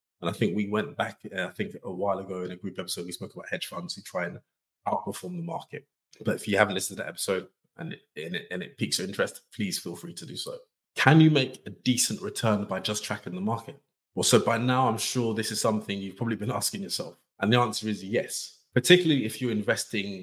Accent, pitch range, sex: British, 100-140 Hz, male